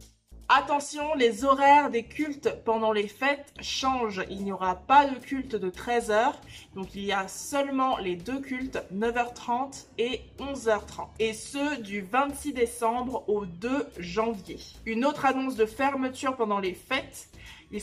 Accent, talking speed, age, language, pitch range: French, 150 wpm, 20-39, French, 205-265 Hz